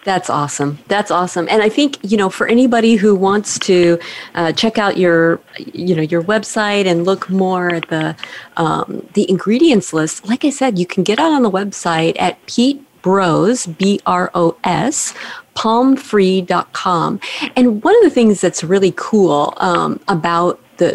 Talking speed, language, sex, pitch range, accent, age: 165 wpm, English, female, 175-235 Hz, American, 40-59